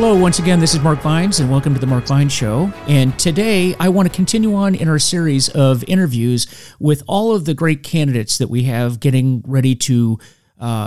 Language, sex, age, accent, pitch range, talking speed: English, male, 40-59, American, 120-155 Hz, 215 wpm